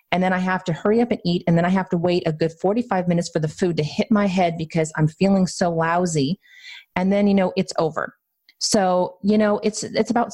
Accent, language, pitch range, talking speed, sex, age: American, English, 160-195 Hz, 250 wpm, female, 30-49